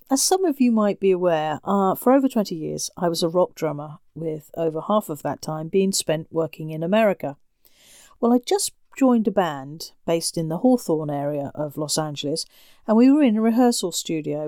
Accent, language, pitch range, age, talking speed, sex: British, English, 165-235 Hz, 40-59, 205 wpm, female